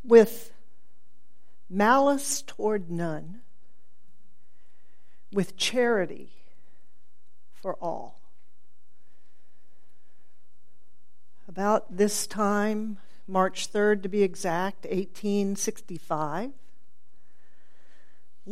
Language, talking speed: English, 55 wpm